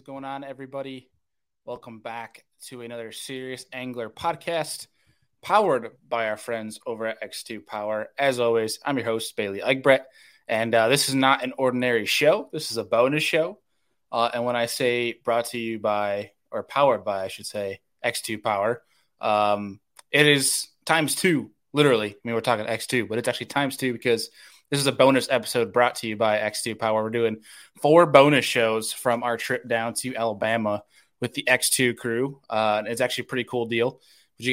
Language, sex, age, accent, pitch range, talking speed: English, male, 20-39, American, 110-130 Hz, 185 wpm